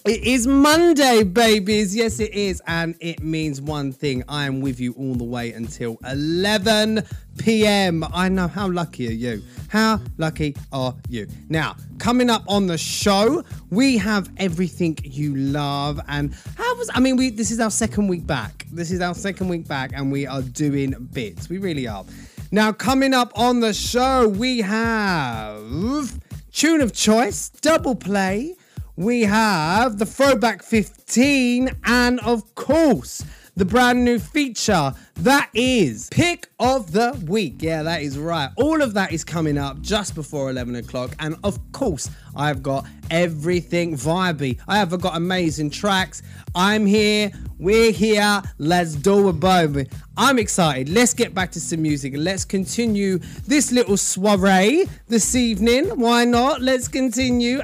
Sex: male